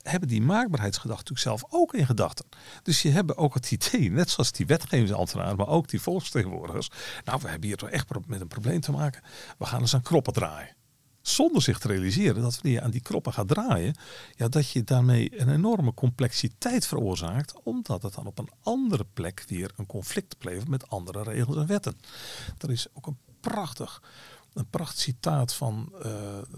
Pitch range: 115-145 Hz